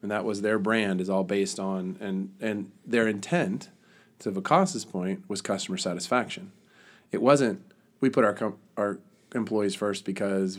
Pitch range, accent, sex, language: 95-115 Hz, American, male, English